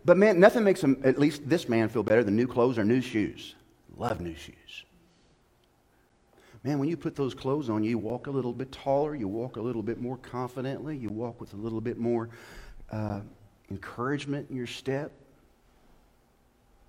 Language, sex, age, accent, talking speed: English, male, 40-59, American, 185 wpm